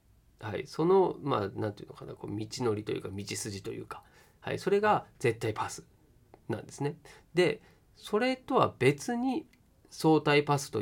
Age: 40-59